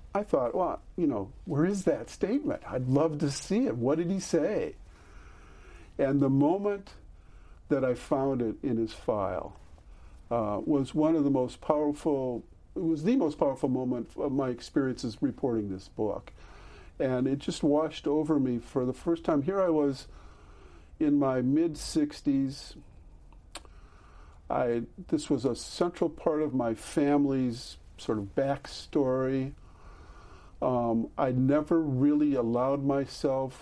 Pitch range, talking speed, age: 95-150 Hz, 145 wpm, 50-69